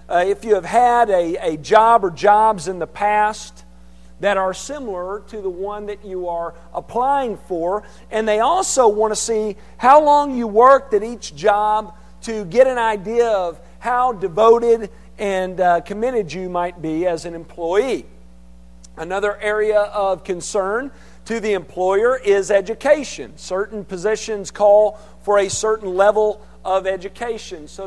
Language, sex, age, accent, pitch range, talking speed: English, male, 50-69, American, 180-230 Hz, 155 wpm